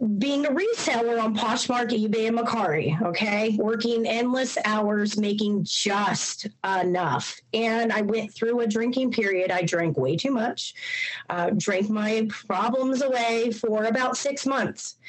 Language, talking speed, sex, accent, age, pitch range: English, 145 wpm, female, American, 30-49, 195-245 Hz